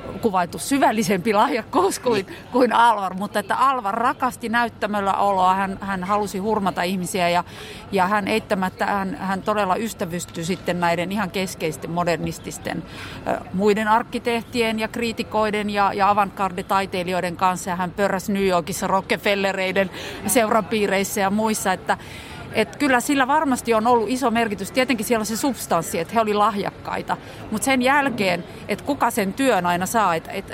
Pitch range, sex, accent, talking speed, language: 185-235 Hz, female, native, 145 wpm, Finnish